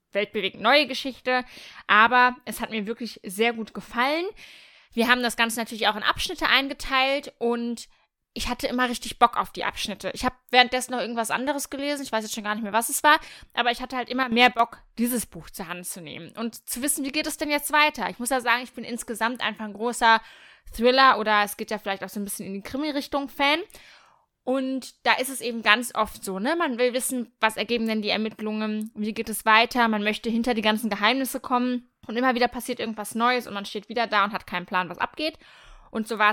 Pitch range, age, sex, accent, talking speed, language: 215-255 Hz, 20-39, female, German, 230 wpm, German